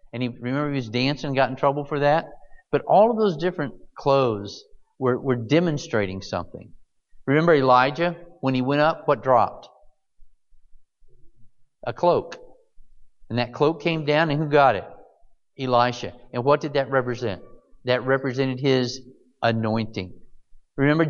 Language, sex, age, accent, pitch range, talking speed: English, male, 50-69, American, 120-155 Hz, 150 wpm